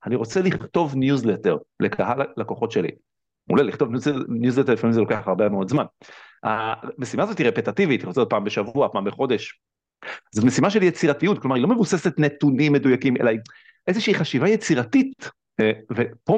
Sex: male